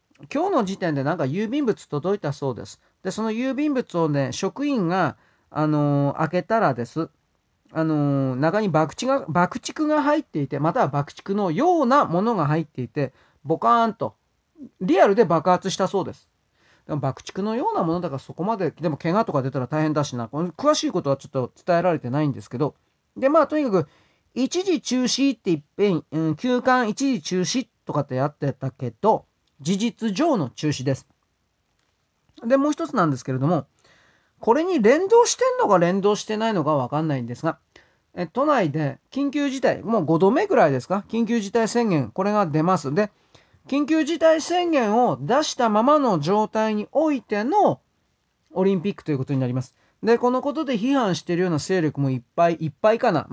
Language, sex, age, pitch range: Japanese, male, 40-59, 145-245 Hz